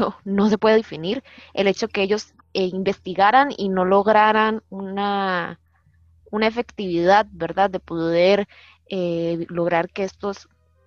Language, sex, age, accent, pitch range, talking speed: Spanish, female, 20-39, Mexican, 180-230 Hz, 135 wpm